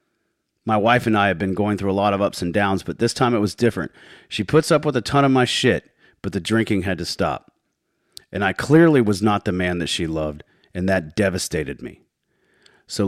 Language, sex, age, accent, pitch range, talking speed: English, male, 40-59, American, 85-115 Hz, 230 wpm